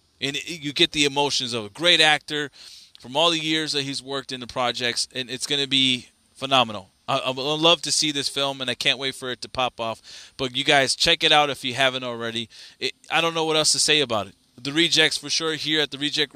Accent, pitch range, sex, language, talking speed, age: American, 125-155 Hz, male, English, 250 wpm, 20-39